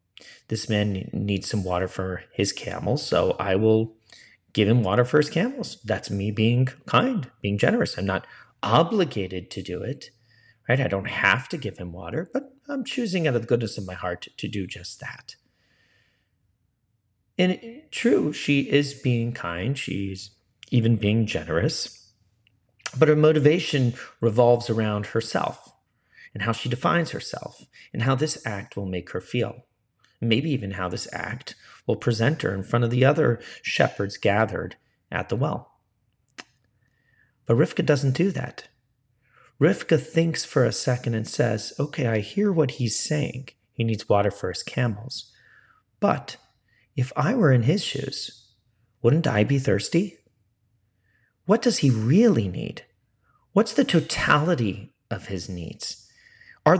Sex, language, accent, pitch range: male, English, American, 105-145 Hz